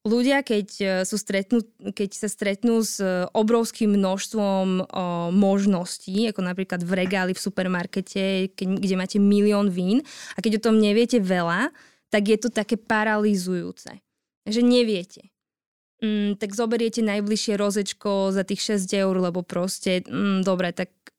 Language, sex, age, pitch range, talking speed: Slovak, female, 20-39, 190-220 Hz, 140 wpm